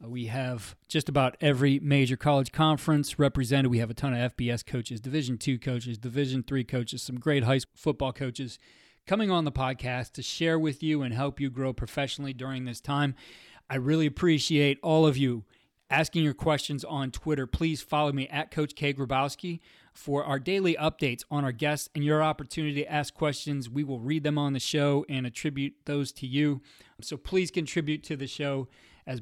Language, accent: English, American